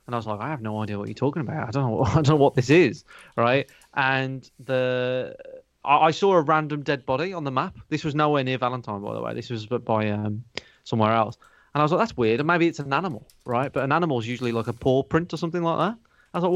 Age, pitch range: 30-49, 120-155 Hz